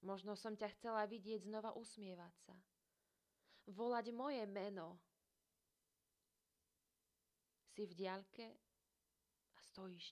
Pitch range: 180-210 Hz